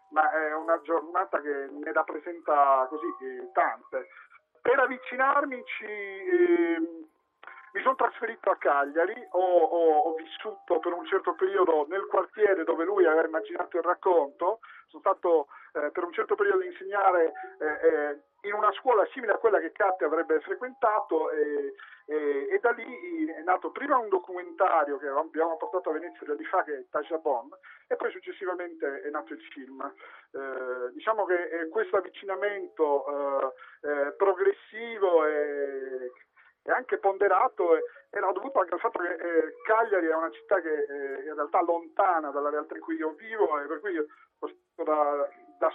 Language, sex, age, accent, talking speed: Italian, male, 40-59, native, 170 wpm